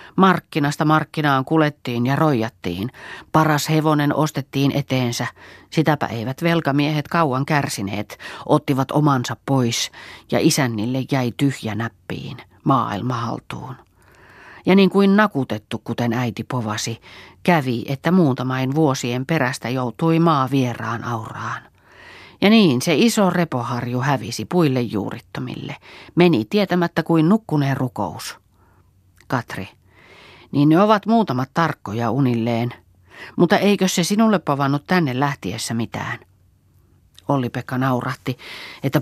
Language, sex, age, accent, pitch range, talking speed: Finnish, female, 40-59, native, 120-160 Hz, 110 wpm